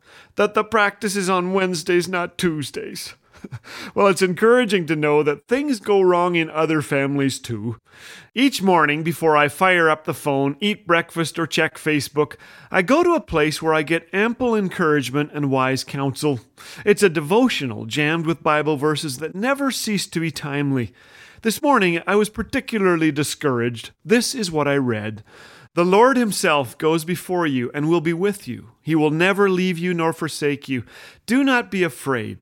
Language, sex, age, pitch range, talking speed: English, male, 40-59, 145-195 Hz, 175 wpm